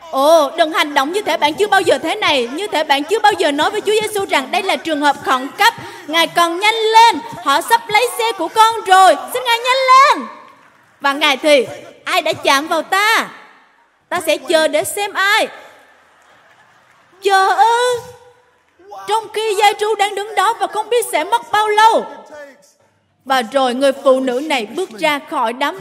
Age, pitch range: 20-39, 280-410 Hz